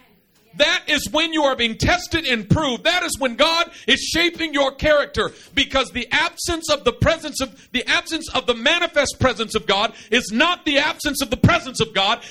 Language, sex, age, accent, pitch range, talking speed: English, male, 50-69, American, 235-310 Hz, 200 wpm